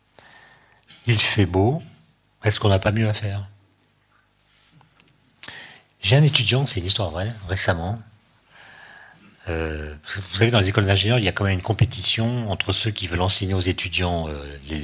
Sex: male